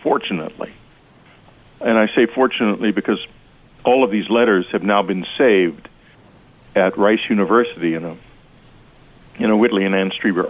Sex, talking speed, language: male, 145 wpm, English